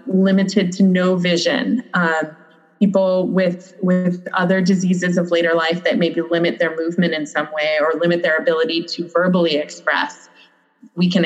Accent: American